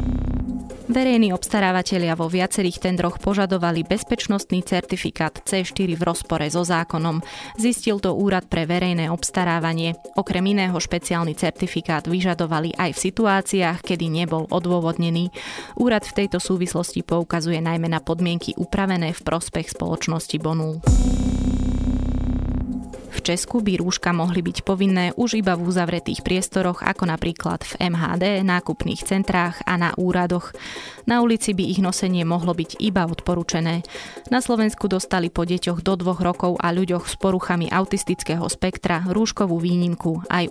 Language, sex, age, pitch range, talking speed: Slovak, female, 20-39, 165-190 Hz, 135 wpm